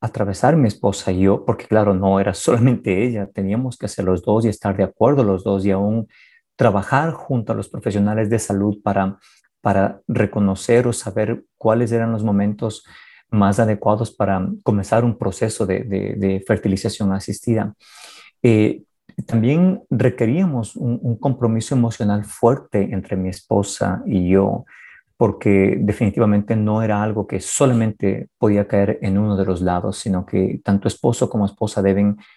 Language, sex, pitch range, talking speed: Spanish, male, 100-120 Hz, 160 wpm